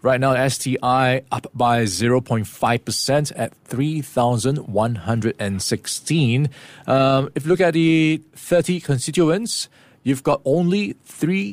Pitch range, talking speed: 115-150 Hz, 110 wpm